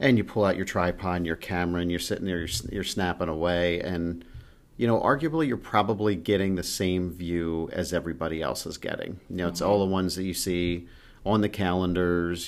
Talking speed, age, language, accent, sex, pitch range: 210 wpm, 40-59, English, American, male, 85-100 Hz